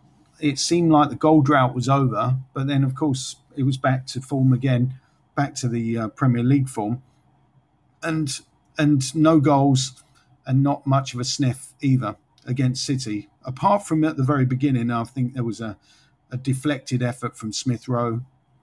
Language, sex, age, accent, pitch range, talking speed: English, male, 50-69, British, 120-145 Hz, 175 wpm